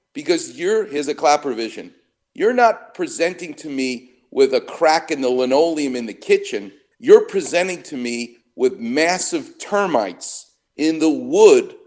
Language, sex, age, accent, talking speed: English, male, 50-69, American, 150 wpm